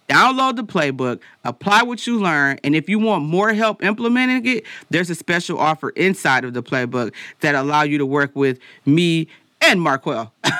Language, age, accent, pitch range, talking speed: English, 40-59, American, 140-190 Hz, 180 wpm